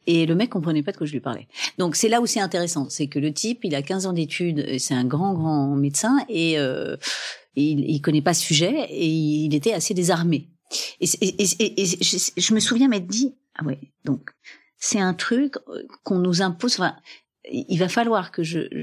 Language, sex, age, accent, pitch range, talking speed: French, female, 40-59, French, 155-225 Hz, 225 wpm